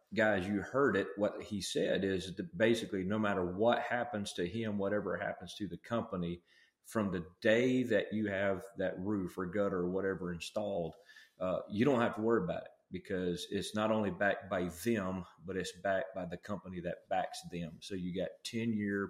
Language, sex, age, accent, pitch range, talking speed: English, male, 30-49, American, 90-105 Hz, 200 wpm